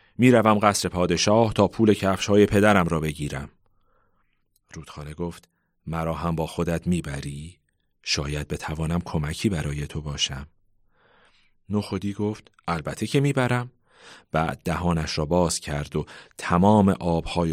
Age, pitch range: 40-59, 80-110 Hz